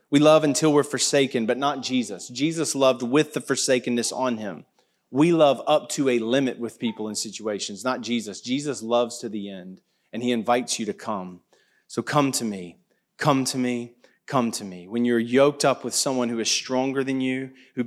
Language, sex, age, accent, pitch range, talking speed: English, male, 30-49, American, 110-135 Hz, 200 wpm